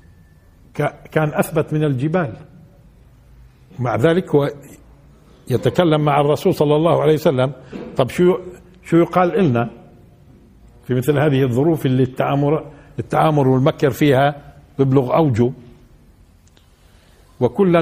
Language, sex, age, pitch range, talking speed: Arabic, male, 60-79, 125-160 Hz, 105 wpm